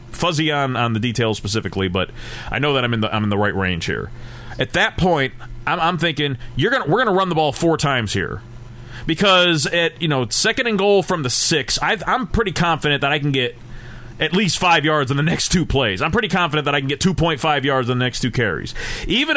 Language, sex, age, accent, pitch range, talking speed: English, male, 30-49, American, 125-170 Hz, 245 wpm